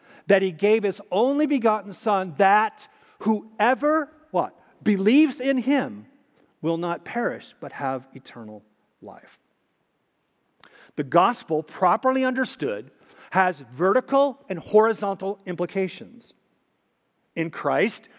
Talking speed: 100 wpm